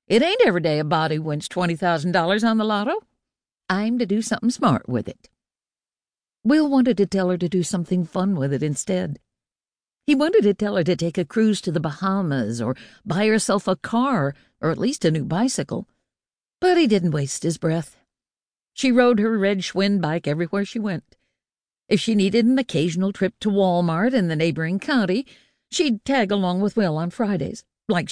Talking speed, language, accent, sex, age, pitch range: 190 wpm, English, American, female, 60-79, 160-220 Hz